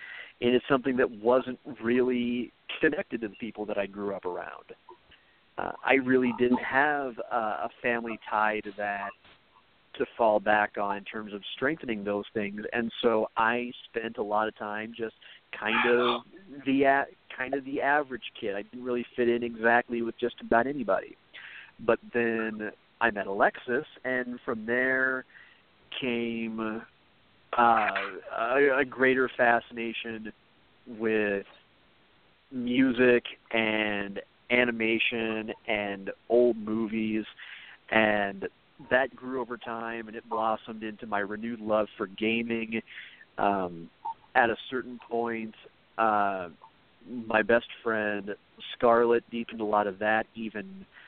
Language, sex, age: English, male, 40-59